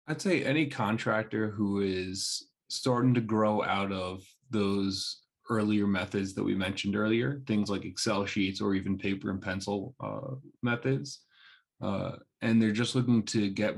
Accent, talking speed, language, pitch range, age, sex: American, 155 wpm, English, 95-110 Hz, 20-39, male